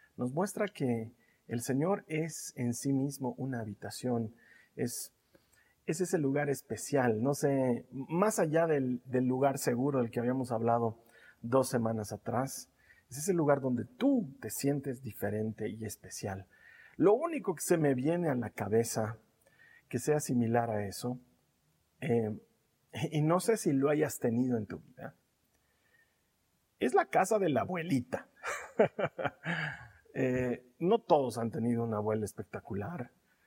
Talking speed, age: 145 wpm, 50-69